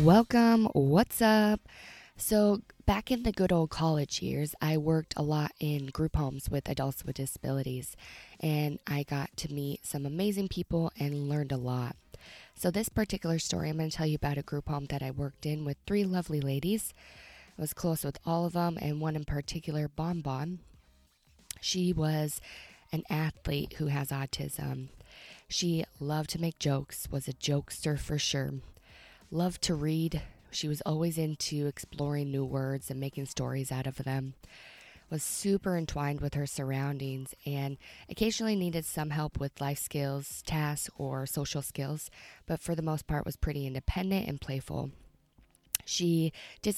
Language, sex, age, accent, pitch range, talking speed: English, female, 20-39, American, 140-165 Hz, 165 wpm